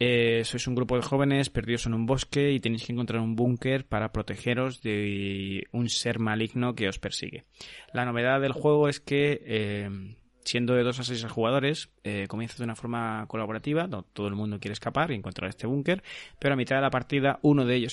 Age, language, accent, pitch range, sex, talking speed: 20-39, Spanish, Spanish, 110-135 Hz, male, 210 wpm